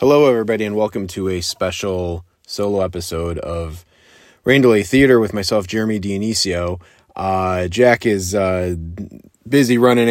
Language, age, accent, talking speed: English, 30-49, American, 135 wpm